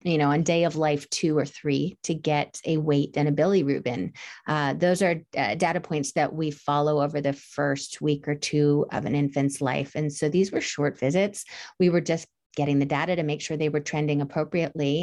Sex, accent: female, American